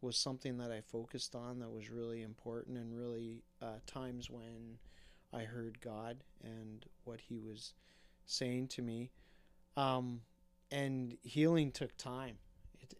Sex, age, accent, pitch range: male, 30-49, American, 115-130 Hz